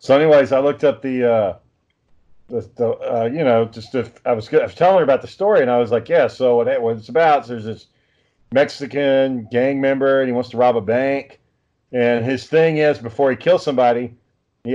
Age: 40-59